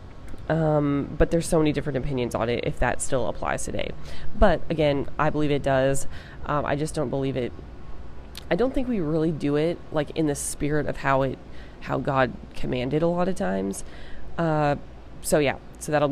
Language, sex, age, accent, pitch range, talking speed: English, female, 20-39, American, 145-170 Hz, 195 wpm